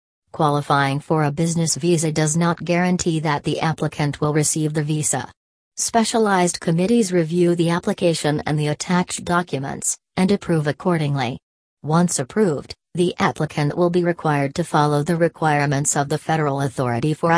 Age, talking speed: 40-59, 150 wpm